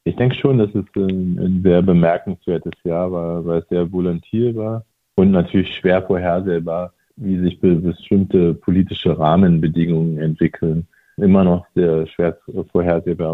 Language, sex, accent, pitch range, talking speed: German, male, German, 85-95 Hz, 130 wpm